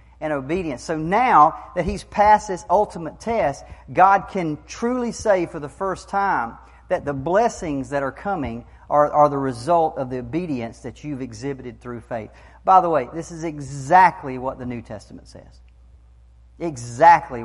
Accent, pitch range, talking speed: American, 125-185 Hz, 165 wpm